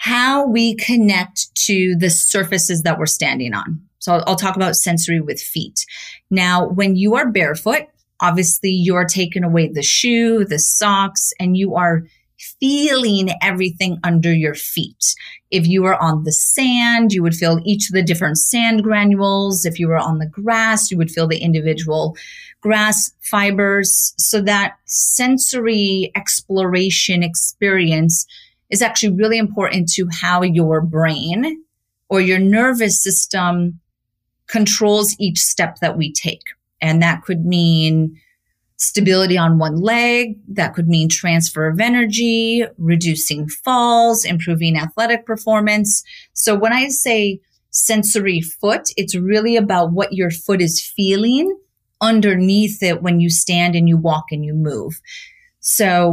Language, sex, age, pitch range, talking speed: English, female, 30-49, 165-215 Hz, 145 wpm